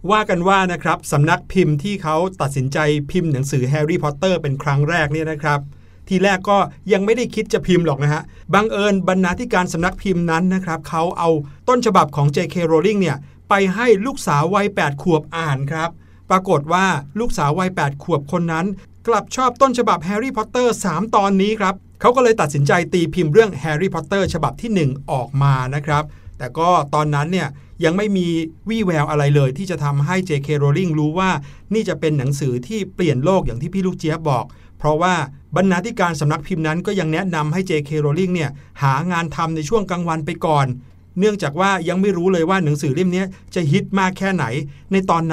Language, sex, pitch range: Thai, male, 150-190 Hz